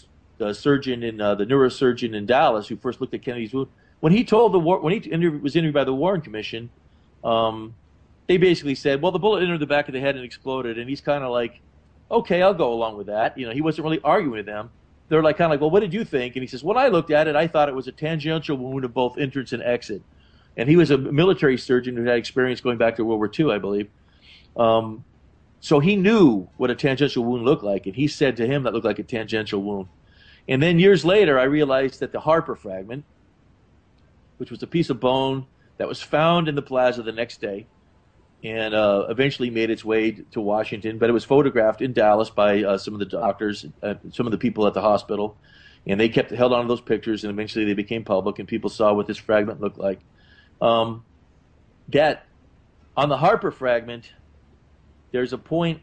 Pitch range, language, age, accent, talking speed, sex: 105-145 Hz, English, 40-59, American, 230 wpm, male